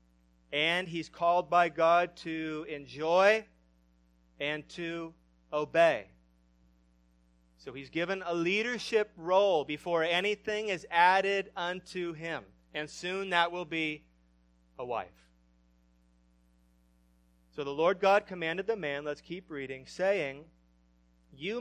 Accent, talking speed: American, 115 wpm